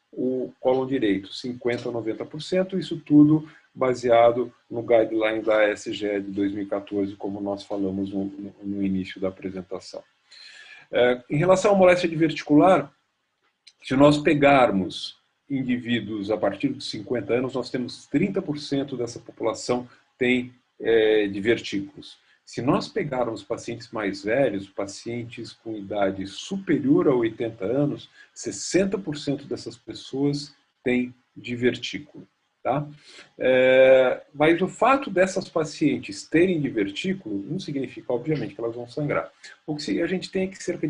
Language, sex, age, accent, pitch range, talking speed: Portuguese, male, 40-59, Brazilian, 115-155 Hz, 115 wpm